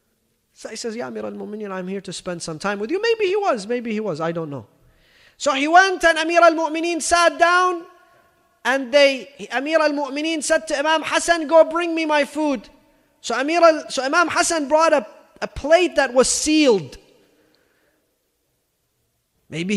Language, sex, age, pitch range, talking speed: English, male, 30-49, 230-335 Hz, 175 wpm